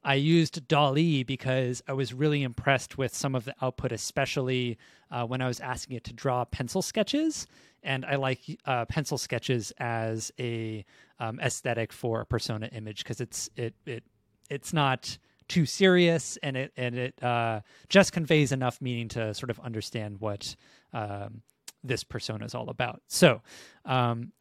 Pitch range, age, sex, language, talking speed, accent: 115-140 Hz, 30-49, male, English, 165 wpm, American